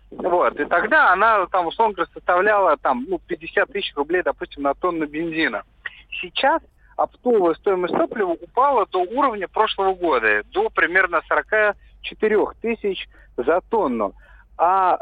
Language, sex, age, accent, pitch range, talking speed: Russian, male, 40-59, native, 170-225 Hz, 130 wpm